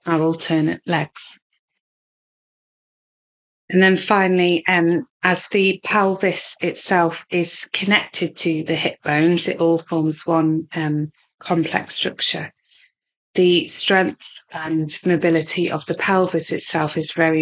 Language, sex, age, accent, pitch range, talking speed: English, female, 30-49, British, 160-185 Hz, 115 wpm